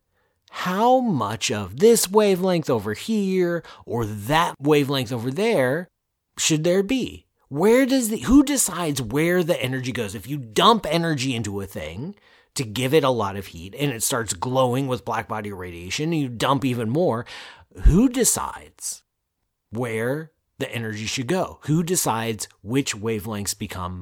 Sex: male